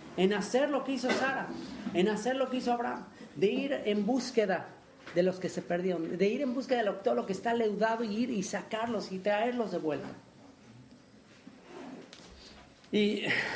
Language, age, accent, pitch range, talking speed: English, 40-59, Mexican, 130-195 Hz, 180 wpm